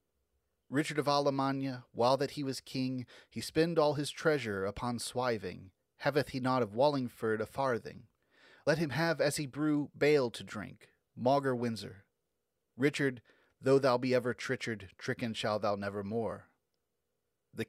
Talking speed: 155 wpm